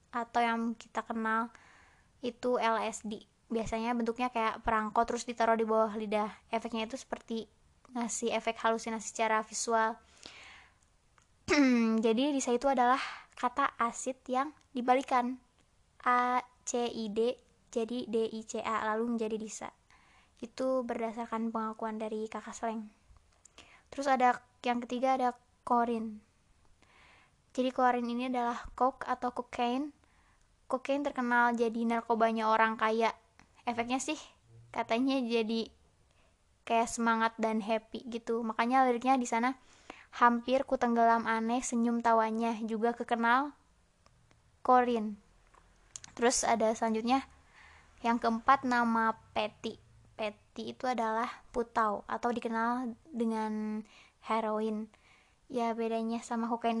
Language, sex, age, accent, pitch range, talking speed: Indonesian, female, 20-39, native, 225-245 Hz, 115 wpm